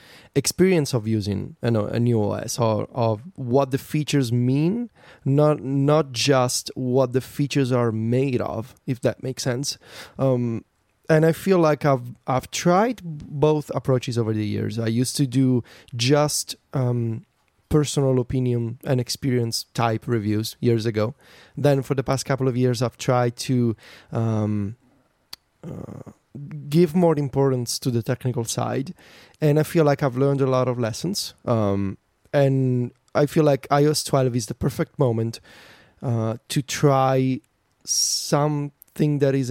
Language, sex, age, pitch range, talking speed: English, male, 30-49, 115-145 Hz, 150 wpm